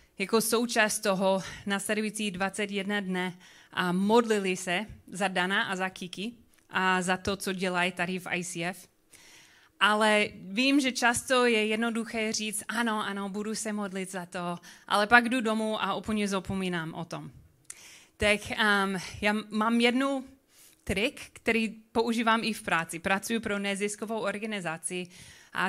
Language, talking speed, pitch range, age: Czech, 145 wpm, 185-220 Hz, 30-49